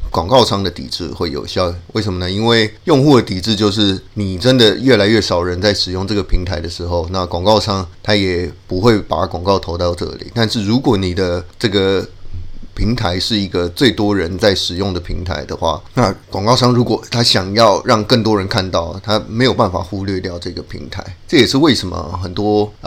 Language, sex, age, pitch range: Chinese, male, 30-49, 95-110 Hz